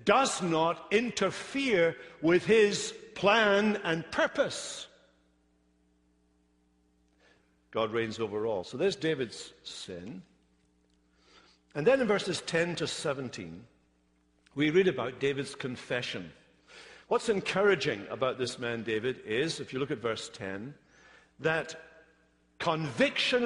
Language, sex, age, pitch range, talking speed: English, male, 60-79, 130-190 Hz, 110 wpm